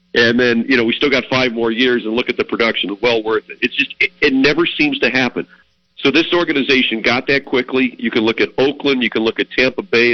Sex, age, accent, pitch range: male, 50-69, American, 115-170 Hz